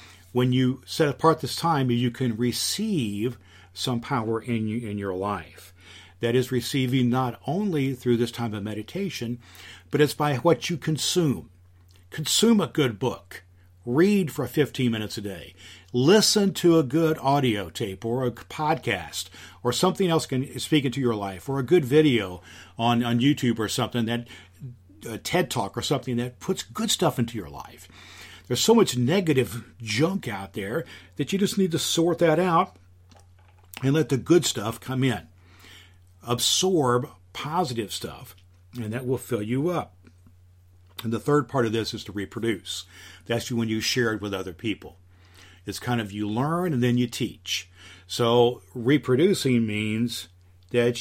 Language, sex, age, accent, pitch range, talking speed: English, male, 50-69, American, 95-135 Hz, 165 wpm